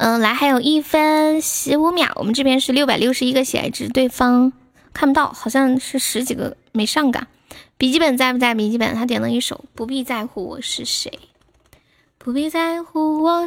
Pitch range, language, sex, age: 225-280 Hz, Chinese, female, 10-29